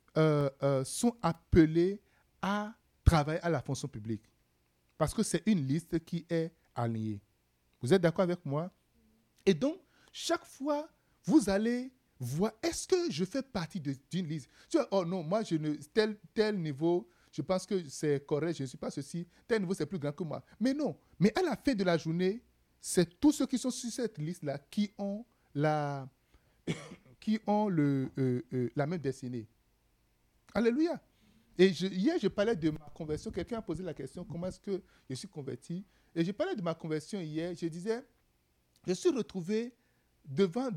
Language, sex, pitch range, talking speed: French, male, 150-220 Hz, 185 wpm